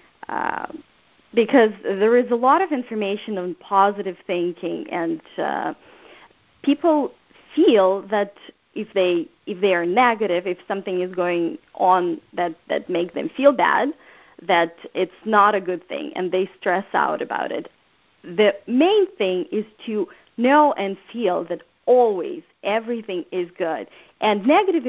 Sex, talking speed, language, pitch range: female, 145 wpm, English, 190-250 Hz